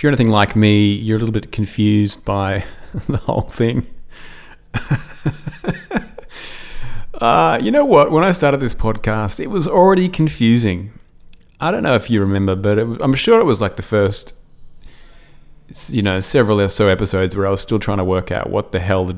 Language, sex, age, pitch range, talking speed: English, male, 30-49, 95-120 Hz, 190 wpm